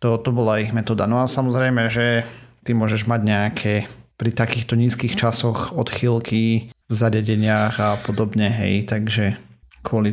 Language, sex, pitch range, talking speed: Slovak, male, 105-120 Hz, 150 wpm